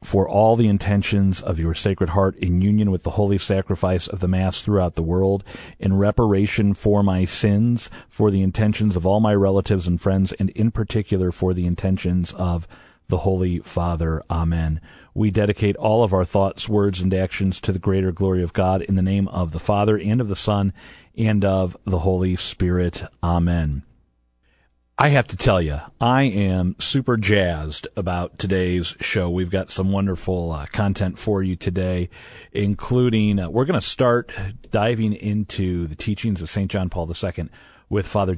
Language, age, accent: English, 40-59, American